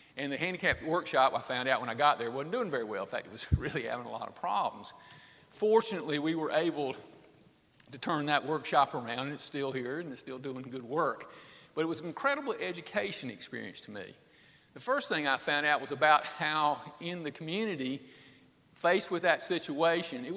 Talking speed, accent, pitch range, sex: 205 wpm, American, 140-180 Hz, male